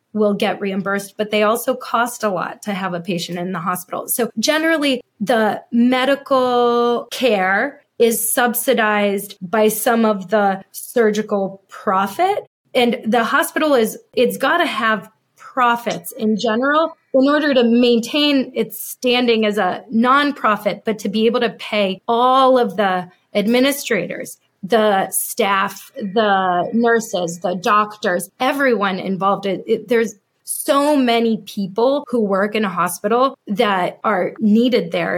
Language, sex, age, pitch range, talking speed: English, female, 20-39, 200-250 Hz, 140 wpm